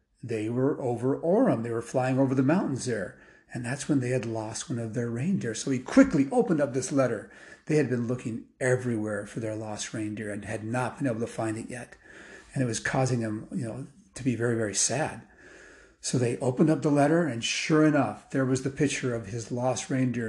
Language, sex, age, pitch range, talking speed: English, male, 40-59, 120-170 Hz, 220 wpm